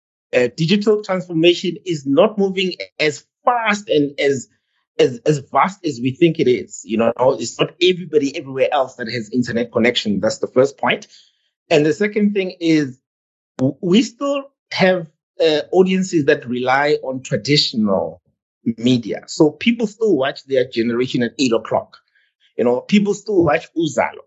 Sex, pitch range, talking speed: male, 140-200 Hz, 160 wpm